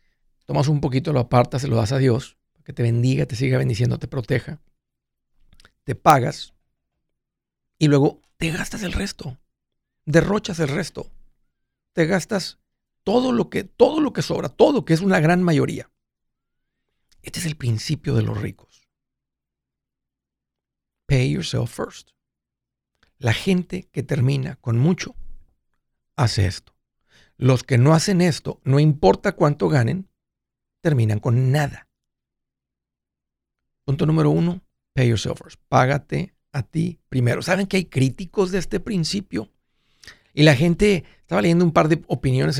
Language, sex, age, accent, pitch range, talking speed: Spanish, male, 50-69, Mexican, 130-175 Hz, 140 wpm